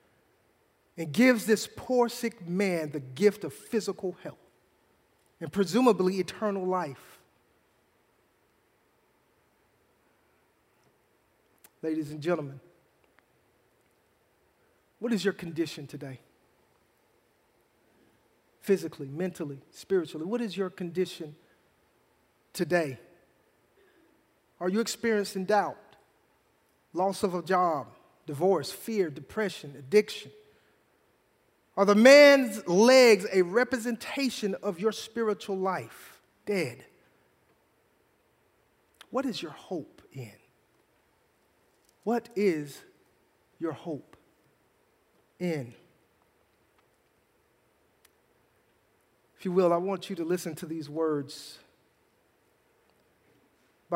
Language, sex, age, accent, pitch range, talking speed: English, male, 50-69, American, 160-210 Hz, 85 wpm